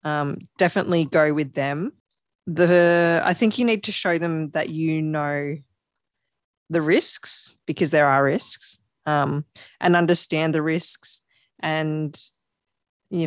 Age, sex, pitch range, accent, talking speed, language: 20-39, female, 145-175 Hz, Australian, 130 wpm, English